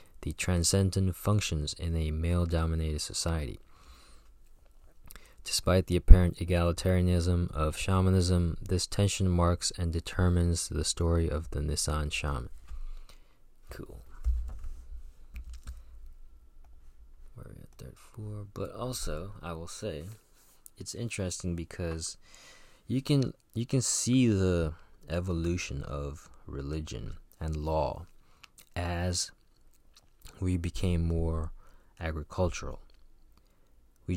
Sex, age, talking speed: male, 20-39, 95 wpm